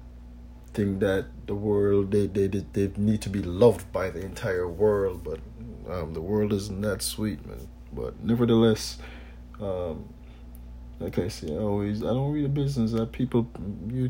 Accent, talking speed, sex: American, 170 wpm, male